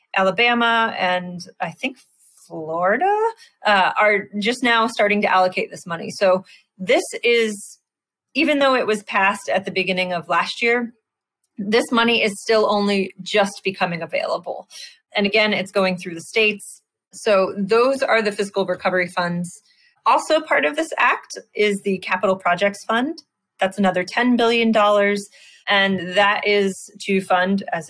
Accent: American